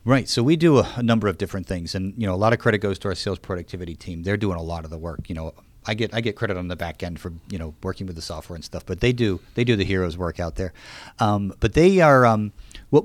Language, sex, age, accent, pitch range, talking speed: English, male, 40-59, American, 95-115 Hz, 305 wpm